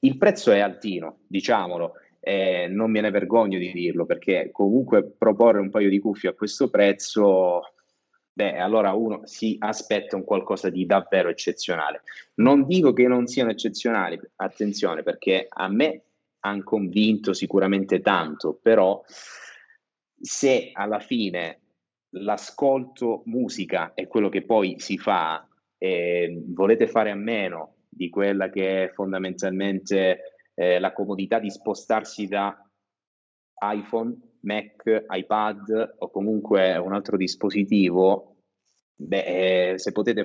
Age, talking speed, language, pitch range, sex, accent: 30-49, 125 wpm, Italian, 95-110 Hz, male, native